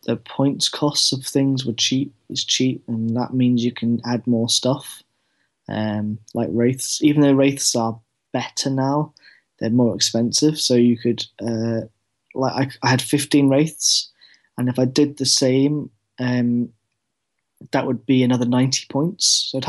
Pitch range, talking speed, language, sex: 120-140 Hz, 165 wpm, English, male